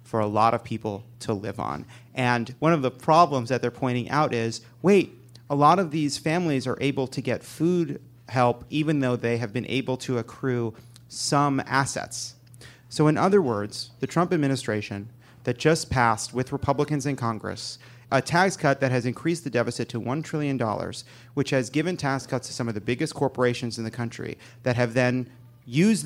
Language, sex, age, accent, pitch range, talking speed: English, male, 30-49, American, 120-145 Hz, 190 wpm